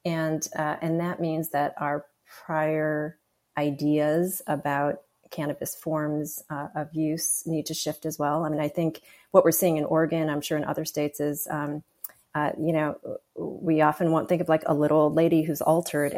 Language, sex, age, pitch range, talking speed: English, female, 30-49, 145-165 Hz, 185 wpm